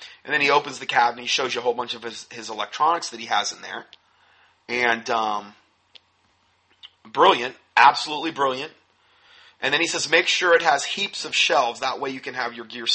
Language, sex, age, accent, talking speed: English, male, 40-59, American, 205 wpm